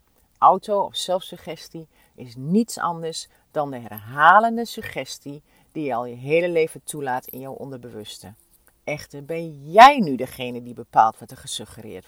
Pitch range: 130-195 Hz